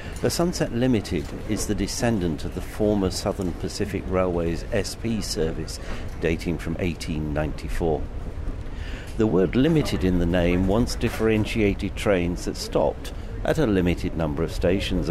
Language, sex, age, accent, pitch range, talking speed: English, male, 60-79, British, 85-105 Hz, 135 wpm